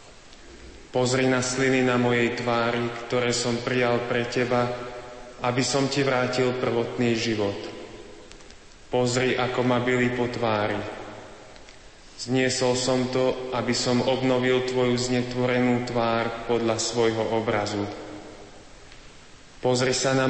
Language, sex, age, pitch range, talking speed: Slovak, male, 30-49, 115-125 Hz, 110 wpm